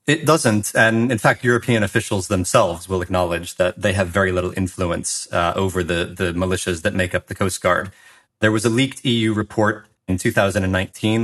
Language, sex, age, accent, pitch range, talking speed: English, male, 30-49, American, 95-115 Hz, 185 wpm